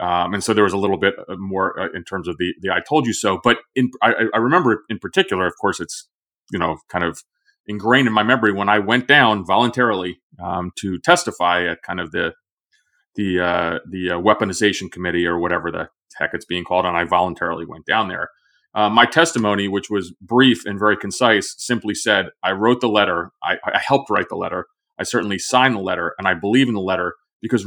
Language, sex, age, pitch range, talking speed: English, male, 30-49, 95-120 Hz, 215 wpm